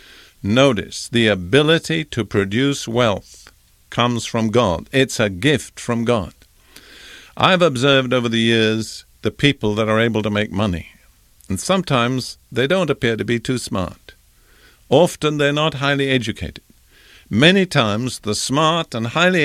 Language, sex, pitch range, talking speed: English, male, 110-155 Hz, 145 wpm